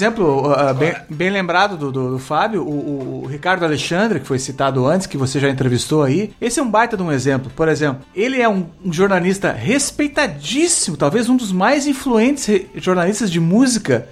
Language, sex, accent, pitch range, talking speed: Portuguese, male, Brazilian, 165-235 Hz, 190 wpm